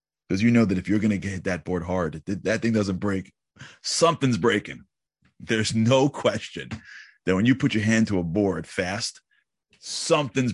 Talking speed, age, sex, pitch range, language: 175 wpm, 30-49, male, 90-115 Hz, English